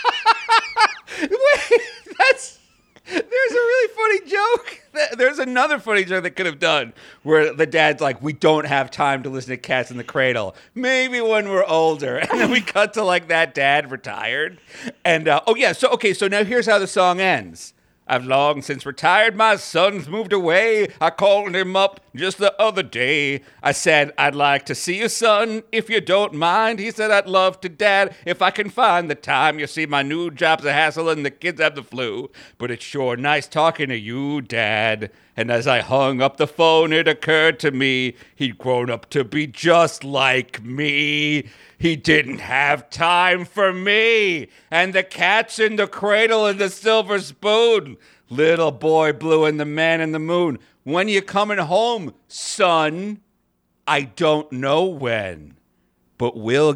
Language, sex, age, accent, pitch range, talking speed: English, male, 50-69, American, 135-205 Hz, 185 wpm